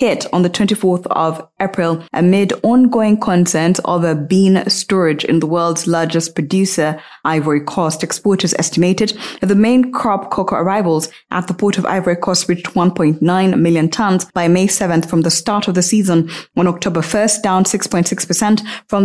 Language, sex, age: English, female, 20-39